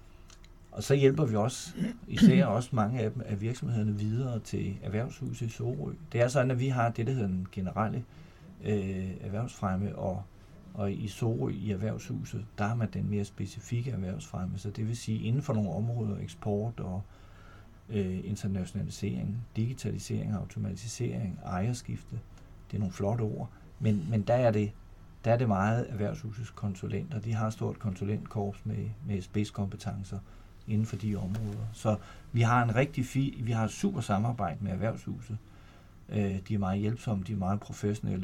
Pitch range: 100-115 Hz